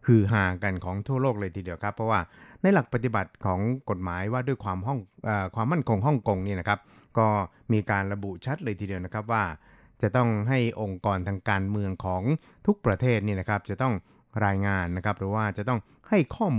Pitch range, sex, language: 100-120 Hz, male, Thai